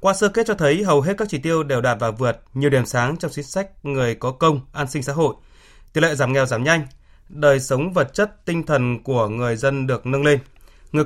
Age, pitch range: 20-39, 130-165 Hz